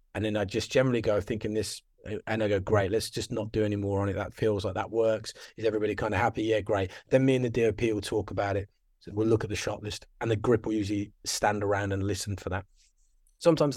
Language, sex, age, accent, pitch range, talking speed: English, male, 30-49, British, 95-115 Hz, 260 wpm